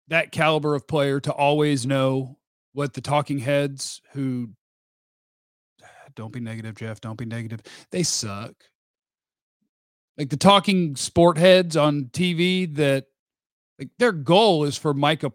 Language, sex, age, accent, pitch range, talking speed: English, male, 40-59, American, 135-175 Hz, 135 wpm